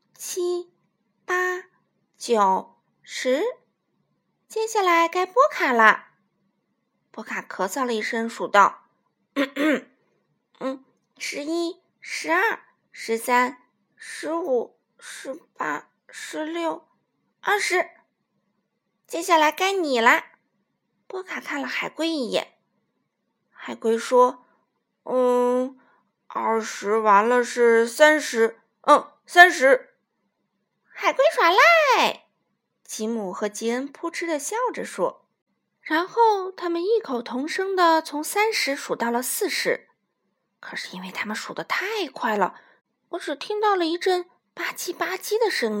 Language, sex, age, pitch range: Chinese, female, 50-69, 245-375 Hz